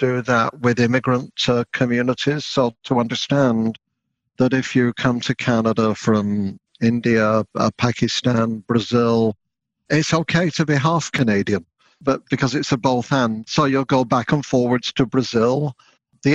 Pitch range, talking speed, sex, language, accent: 120-145 Hz, 150 wpm, male, English, British